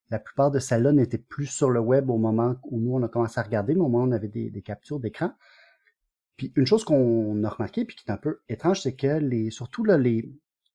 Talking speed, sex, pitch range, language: 250 wpm, male, 115-150 Hz, French